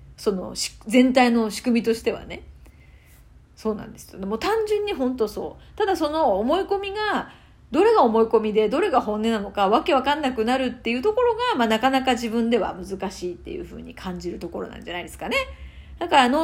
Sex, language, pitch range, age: female, Japanese, 200-285 Hz, 40-59